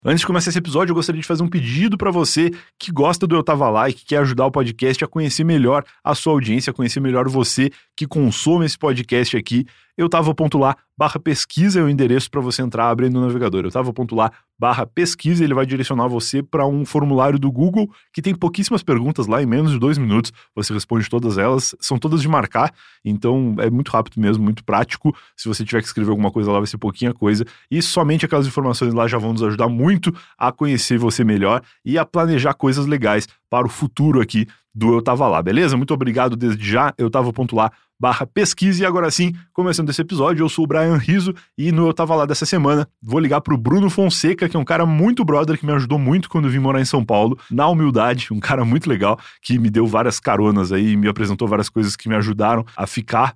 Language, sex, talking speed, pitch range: Portuguese, male, 225 wpm, 115-160 Hz